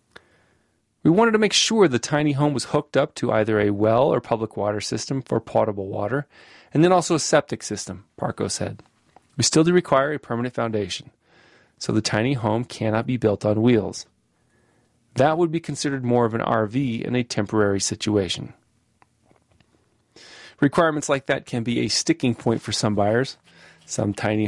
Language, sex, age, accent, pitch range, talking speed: English, male, 30-49, American, 110-145 Hz, 175 wpm